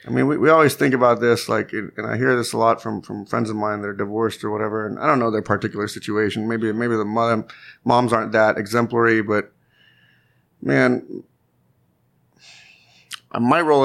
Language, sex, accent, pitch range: English, male, American, 110-145 Hz